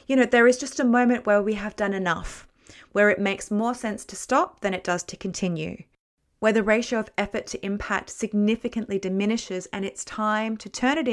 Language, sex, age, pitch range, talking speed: English, female, 30-49, 185-225 Hz, 210 wpm